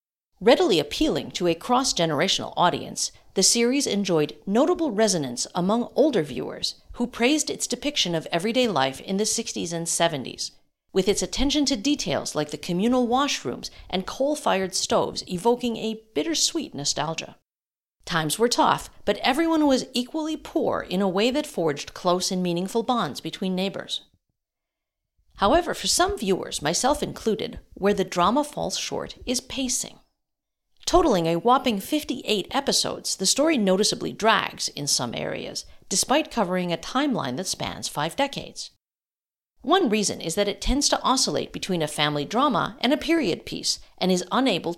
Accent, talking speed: American, 150 wpm